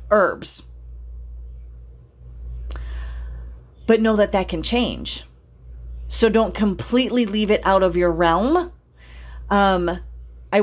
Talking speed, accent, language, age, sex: 100 wpm, American, English, 40-59, female